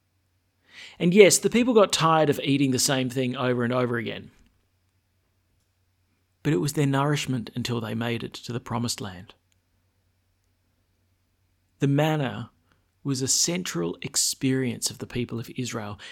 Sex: male